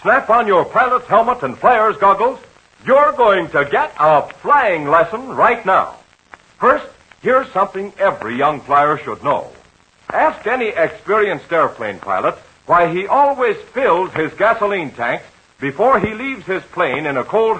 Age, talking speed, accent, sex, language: 60-79, 155 wpm, American, male, English